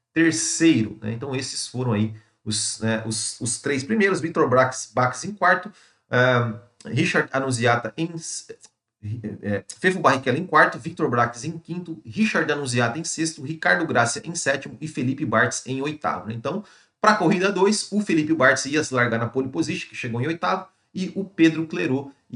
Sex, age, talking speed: male, 40-59, 175 wpm